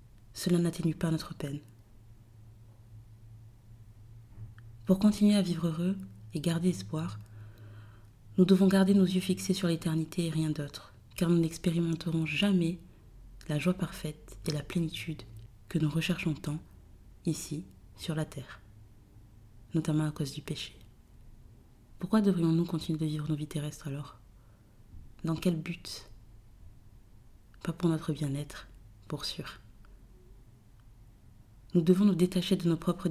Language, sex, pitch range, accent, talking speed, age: French, female, 110-170 Hz, French, 130 wpm, 30-49